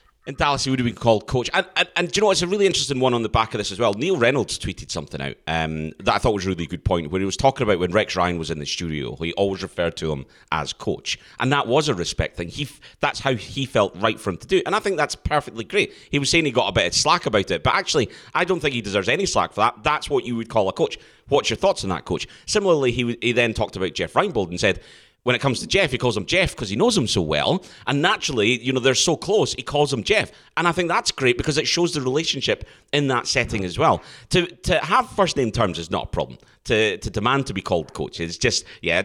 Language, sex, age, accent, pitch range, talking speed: English, male, 30-49, British, 95-155 Hz, 290 wpm